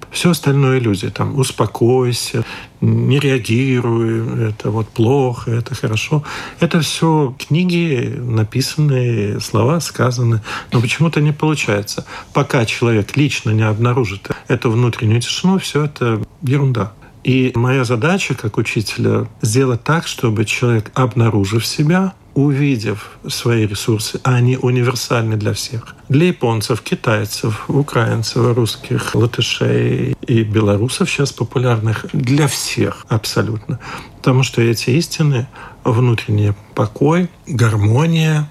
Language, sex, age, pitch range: Russian, male, 50-69, 115-135 Hz